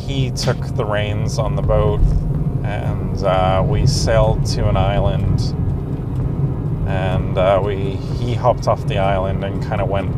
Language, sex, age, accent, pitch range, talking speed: English, male, 30-49, American, 105-135 Hz, 155 wpm